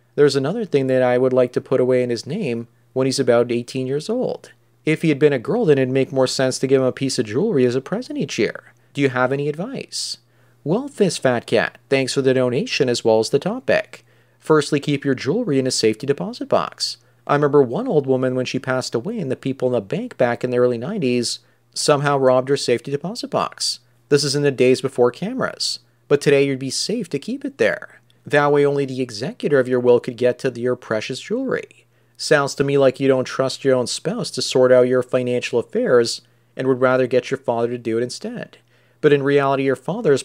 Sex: male